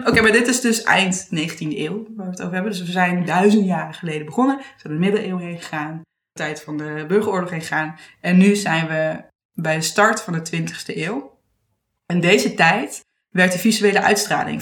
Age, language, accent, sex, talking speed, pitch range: 20-39, Dutch, Dutch, female, 220 wpm, 160-205 Hz